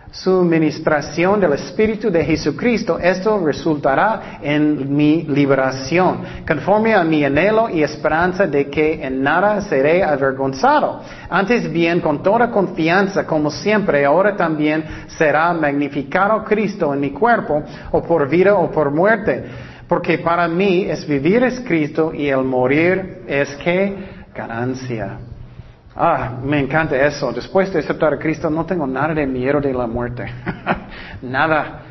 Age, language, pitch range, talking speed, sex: 40-59, Spanish, 150-195 Hz, 140 wpm, male